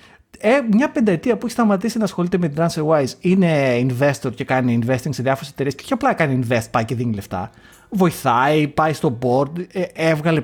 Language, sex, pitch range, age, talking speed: Greek, male, 125-200 Hz, 30-49, 195 wpm